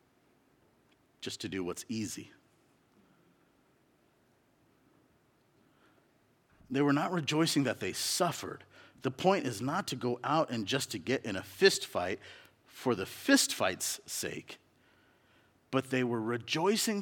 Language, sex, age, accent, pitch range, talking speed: English, male, 50-69, American, 115-160 Hz, 125 wpm